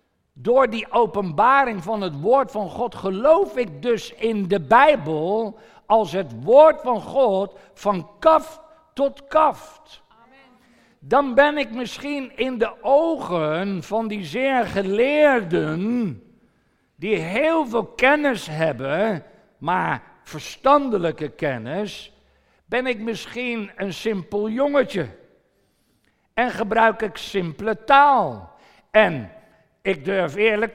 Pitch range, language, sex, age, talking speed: 180-260 Hz, Dutch, male, 60-79, 110 wpm